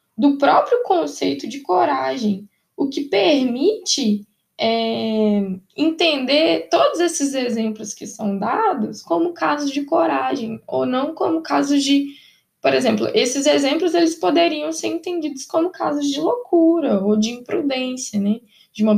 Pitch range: 210-310 Hz